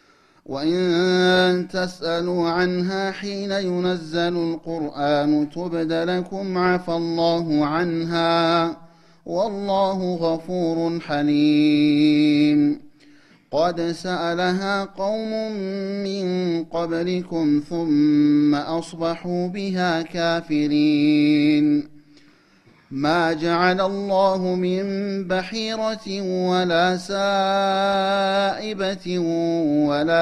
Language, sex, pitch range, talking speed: Amharic, male, 165-195 Hz, 60 wpm